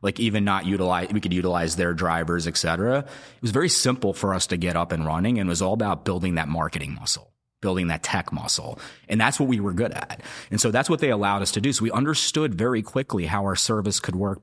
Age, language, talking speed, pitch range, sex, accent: 30-49, English, 250 wpm, 85-110 Hz, male, American